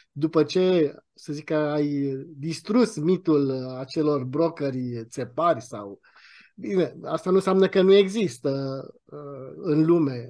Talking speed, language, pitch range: 115 wpm, Romanian, 145-195 Hz